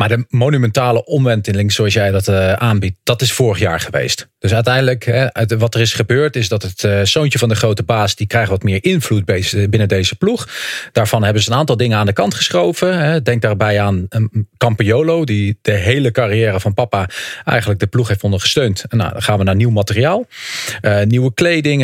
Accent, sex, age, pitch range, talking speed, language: Dutch, male, 40-59, 105-135 Hz, 190 wpm, English